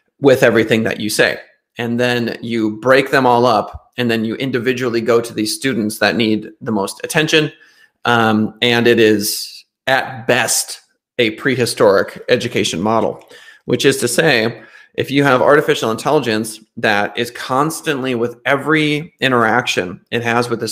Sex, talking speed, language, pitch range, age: male, 155 wpm, English, 110-130 Hz, 30-49